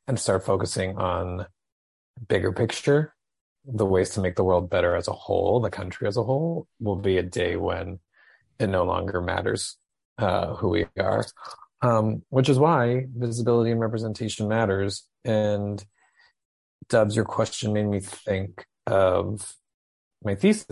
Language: English